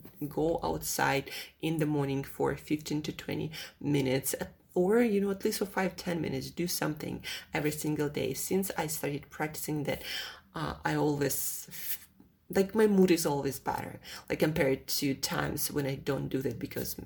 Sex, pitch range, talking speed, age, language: female, 150-190 Hz, 165 wpm, 30-49, English